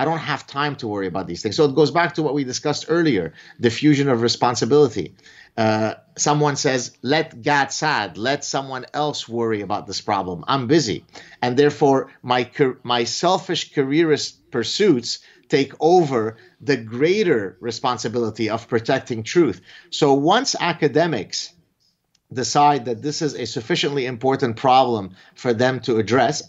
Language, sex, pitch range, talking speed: English, male, 120-155 Hz, 150 wpm